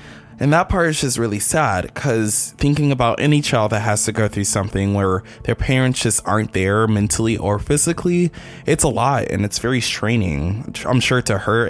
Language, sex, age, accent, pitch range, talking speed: English, male, 20-39, American, 105-145 Hz, 195 wpm